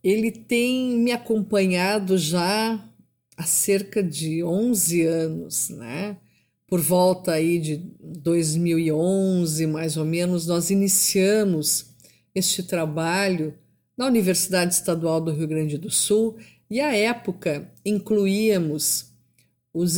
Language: Portuguese